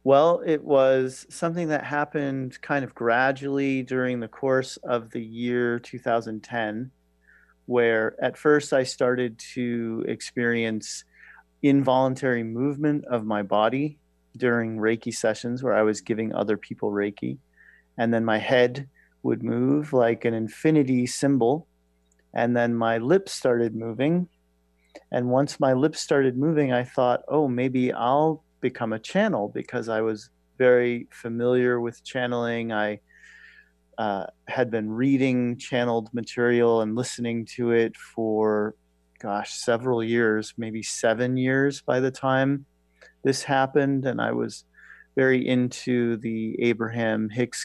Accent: American